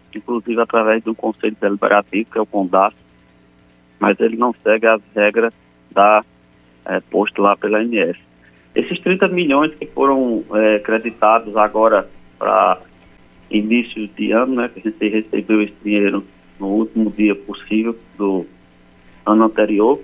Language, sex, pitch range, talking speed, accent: Portuguese, male, 100-115 Hz, 140 wpm, Brazilian